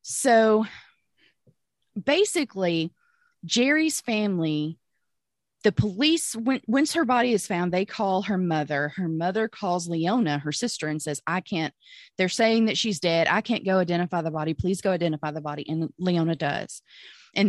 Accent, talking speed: American, 155 wpm